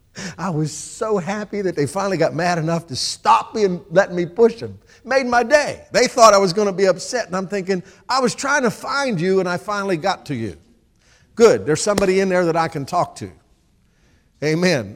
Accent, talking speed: American, 220 wpm